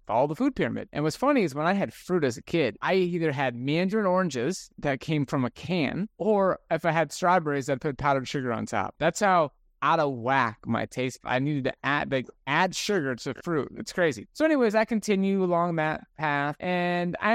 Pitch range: 125-175 Hz